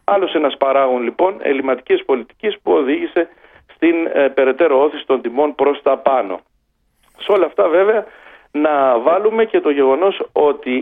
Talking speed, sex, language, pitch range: 145 wpm, male, Greek, 140-215 Hz